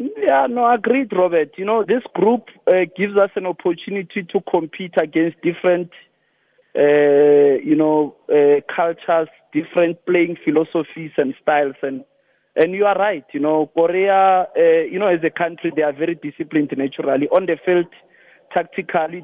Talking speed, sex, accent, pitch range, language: 155 wpm, male, South African, 150-185 Hz, English